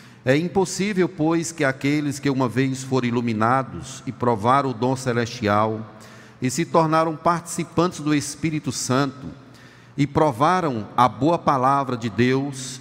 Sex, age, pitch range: male, 40-59, 130-160 Hz